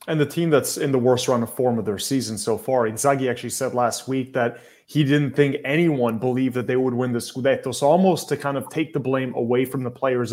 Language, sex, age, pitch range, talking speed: English, male, 30-49, 125-155 Hz, 255 wpm